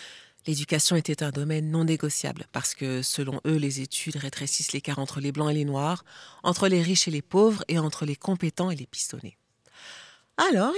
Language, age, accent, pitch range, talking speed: French, 40-59, French, 145-185 Hz, 190 wpm